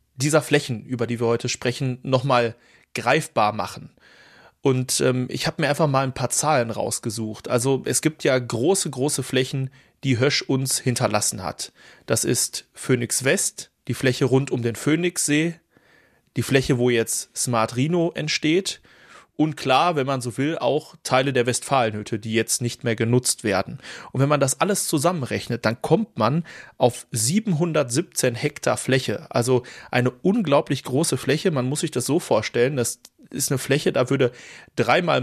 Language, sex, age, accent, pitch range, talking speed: German, male, 30-49, German, 120-150 Hz, 165 wpm